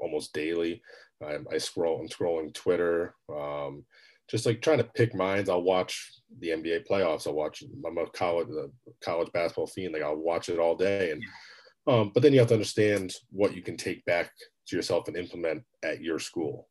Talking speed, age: 190 wpm, 30-49